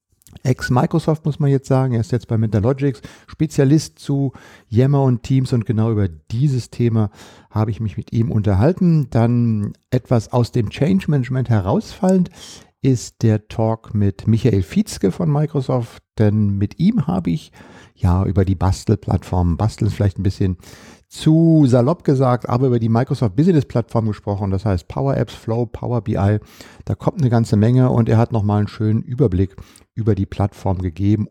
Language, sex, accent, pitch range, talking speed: German, male, German, 105-135 Hz, 165 wpm